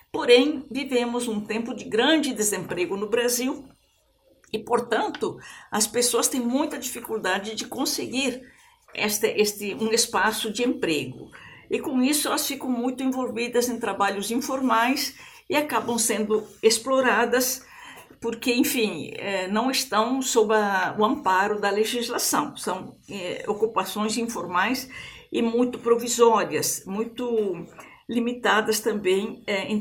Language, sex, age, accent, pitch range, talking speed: Portuguese, female, 50-69, Brazilian, 210-250 Hz, 115 wpm